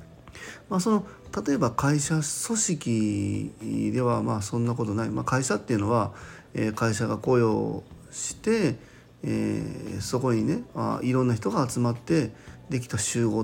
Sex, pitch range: male, 115-145 Hz